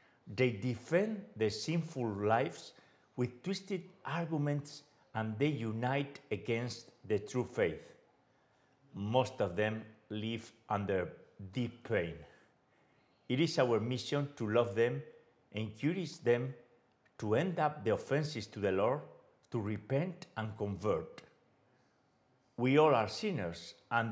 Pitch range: 105-135 Hz